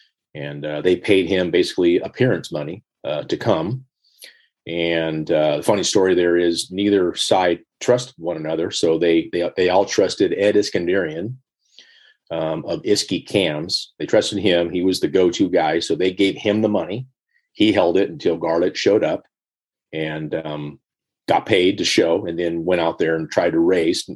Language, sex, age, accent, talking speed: English, male, 40-59, American, 175 wpm